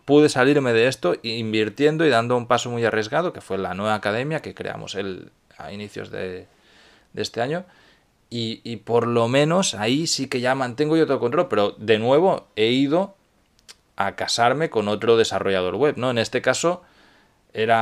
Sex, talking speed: male, 175 wpm